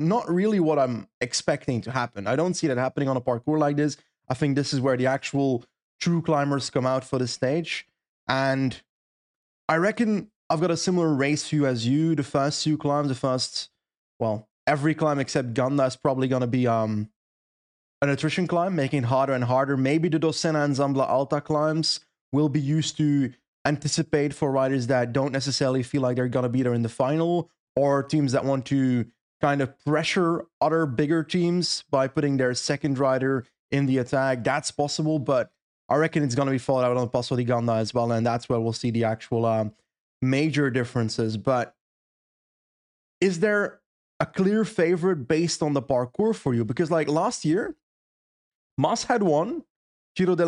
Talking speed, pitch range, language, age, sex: 190 wpm, 130-160 Hz, English, 20-39, male